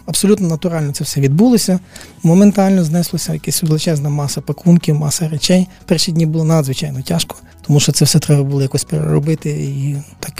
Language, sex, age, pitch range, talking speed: Ukrainian, male, 20-39, 140-165 Hz, 165 wpm